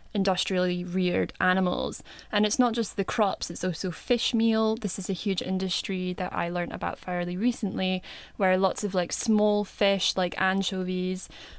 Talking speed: 165 wpm